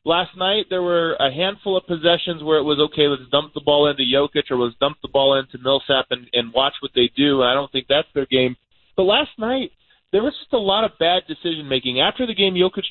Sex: male